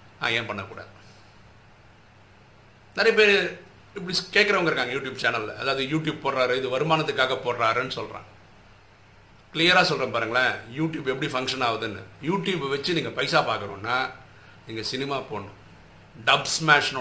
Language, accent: Tamil, native